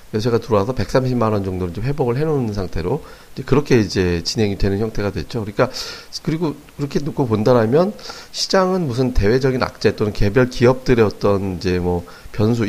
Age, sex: 30-49, male